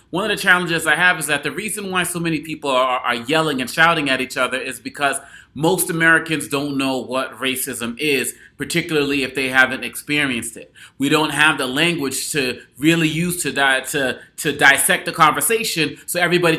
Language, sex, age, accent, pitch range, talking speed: English, male, 30-49, American, 150-195 Hz, 190 wpm